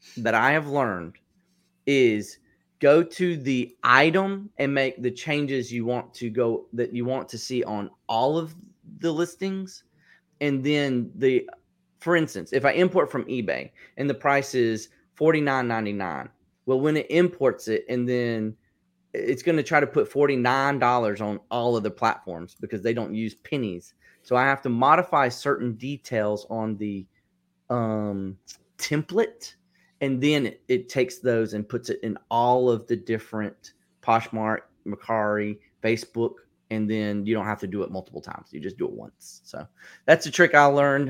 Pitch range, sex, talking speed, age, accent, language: 110-145 Hz, male, 170 wpm, 30-49, American, English